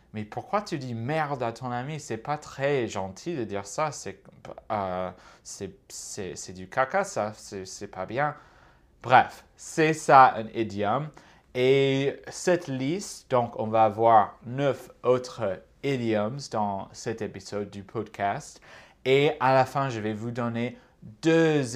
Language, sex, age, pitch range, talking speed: French, male, 30-49, 110-140 Hz, 155 wpm